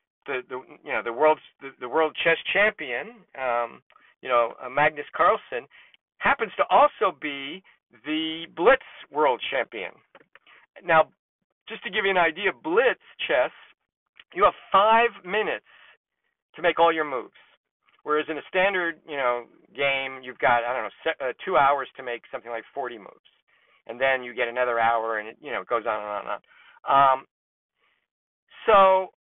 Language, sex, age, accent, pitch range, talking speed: English, male, 50-69, American, 135-175 Hz, 170 wpm